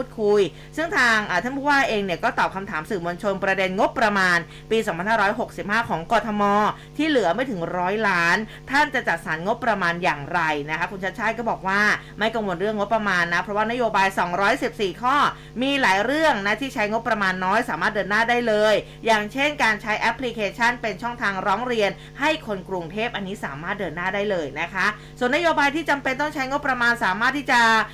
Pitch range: 195-235 Hz